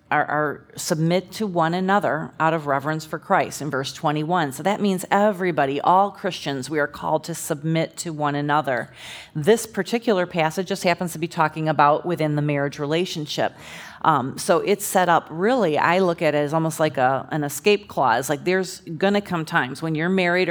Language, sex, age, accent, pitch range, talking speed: English, female, 40-59, American, 155-185 Hz, 195 wpm